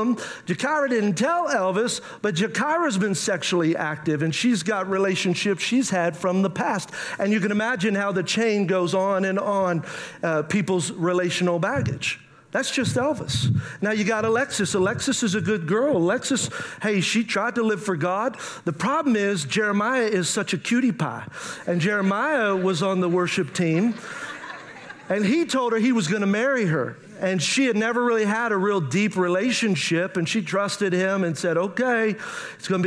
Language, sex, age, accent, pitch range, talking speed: English, male, 40-59, American, 175-220 Hz, 180 wpm